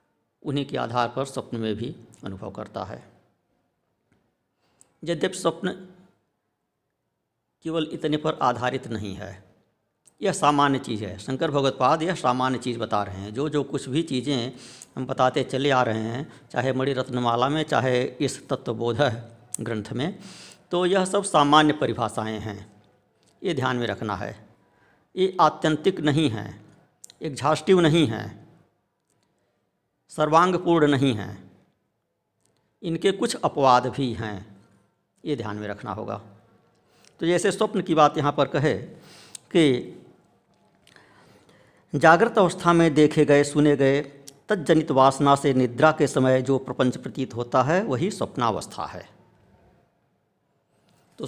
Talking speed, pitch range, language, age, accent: 135 wpm, 120-160 Hz, Hindi, 60-79, native